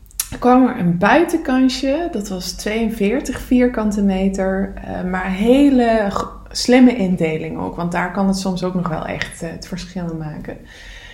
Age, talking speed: 20-39, 150 wpm